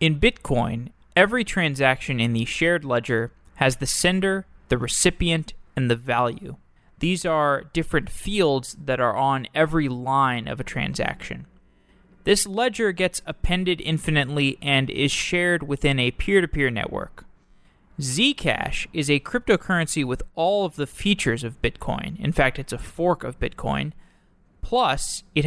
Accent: American